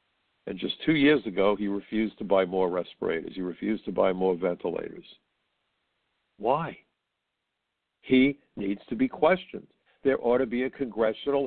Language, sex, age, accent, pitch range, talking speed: English, male, 60-79, American, 105-145 Hz, 150 wpm